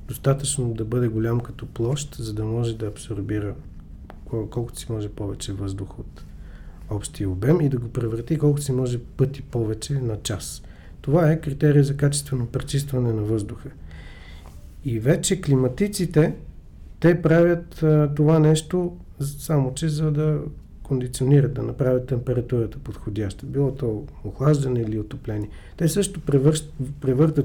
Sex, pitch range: male, 110-145 Hz